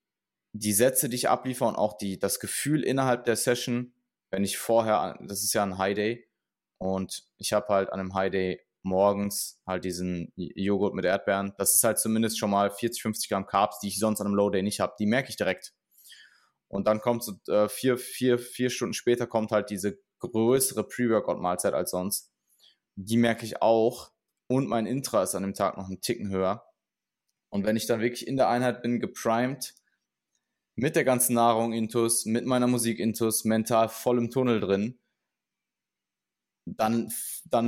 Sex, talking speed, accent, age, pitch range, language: male, 180 wpm, German, 20-39, 100-120 Hz, German